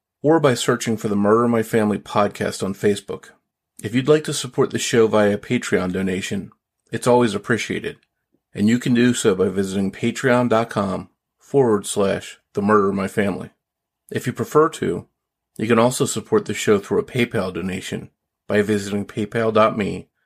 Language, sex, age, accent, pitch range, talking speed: English, male, 40-59, American, 100-120 Hz, 170 wpm